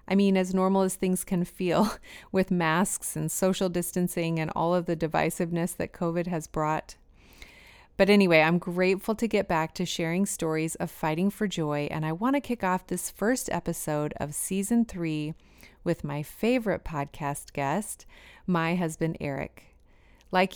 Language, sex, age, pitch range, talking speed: English, female, 30-49, 160-190 Hz, 165 wpm